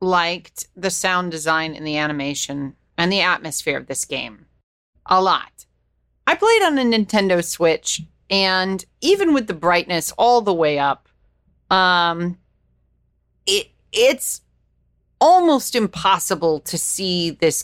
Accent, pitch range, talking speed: American, 170-250 Hz, 130 wpm